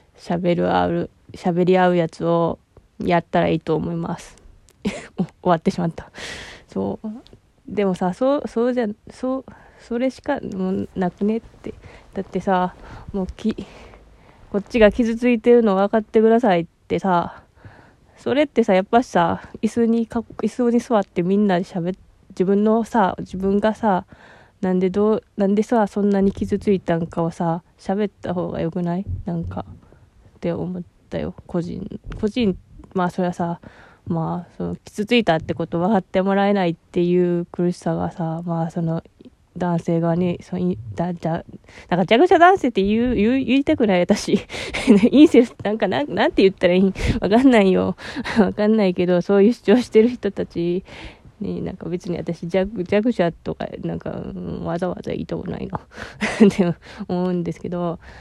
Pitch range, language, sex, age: 170-220 Hz, Japanese, female, 20-39